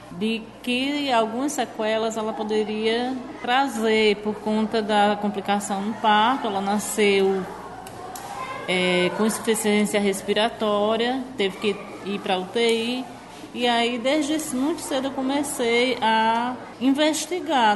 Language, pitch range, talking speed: Portuguese, 215-255 Hz, 110 wpm